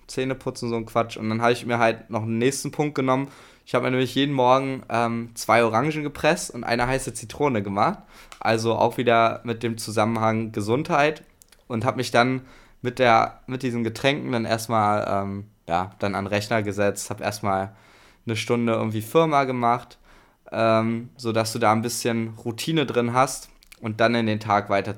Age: 20-39